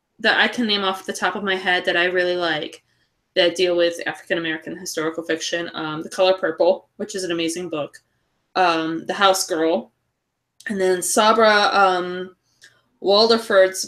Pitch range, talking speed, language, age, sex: 175-215 Hz, 165 wpm, English, 20-39, female